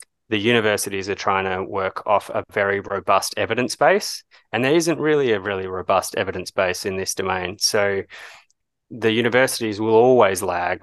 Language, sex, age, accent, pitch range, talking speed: English, male, 20-39, Australian, 95-115 Hz, 165 wpm